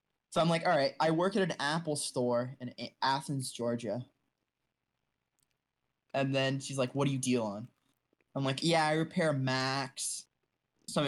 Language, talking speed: English, 160 wpm